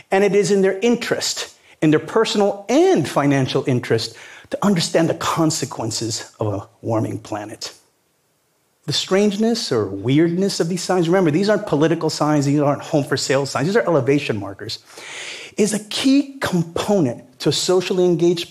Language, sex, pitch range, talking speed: English, male, 135-200 Hz, 155 wpm